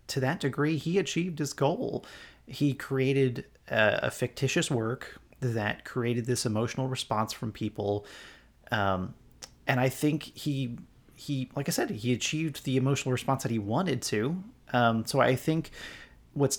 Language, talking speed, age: English, 155 wpm, 30-49